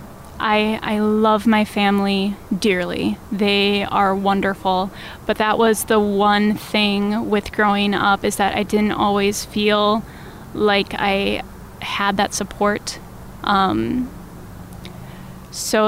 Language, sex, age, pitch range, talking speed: English, female, 10-29, 200-220 Hz, 115 wpm